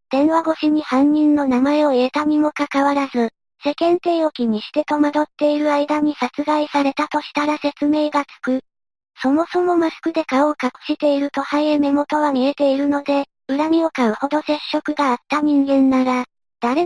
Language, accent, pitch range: Japanese, American, 275-300 Hz